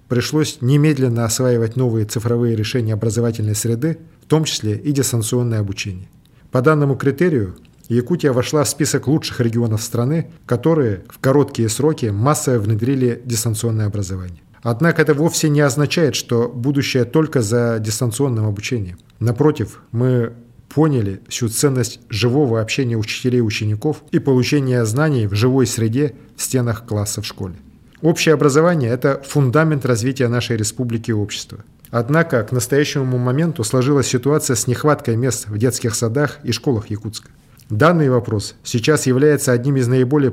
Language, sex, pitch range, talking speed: Russian, male, 115-145 Hz, 140 wpm